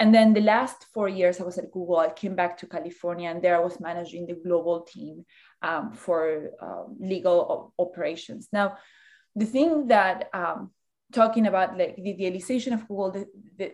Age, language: 20-39, English